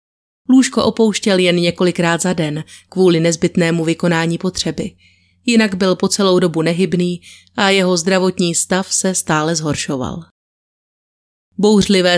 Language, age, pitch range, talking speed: Czech, 30-49, 165-190 Hz, 120 wpm